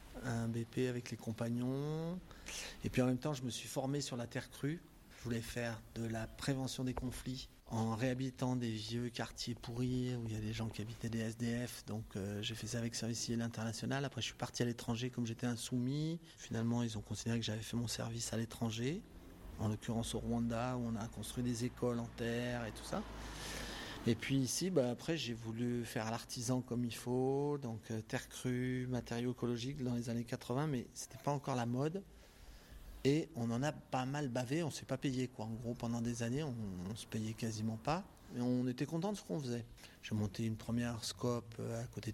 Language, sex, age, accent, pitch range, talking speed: French, male, 30-49, French, 115-130 Hz, 220 wpm